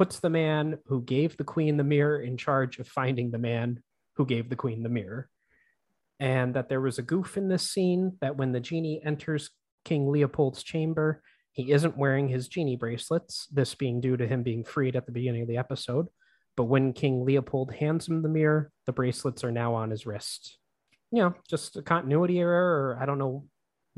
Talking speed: 210 wpm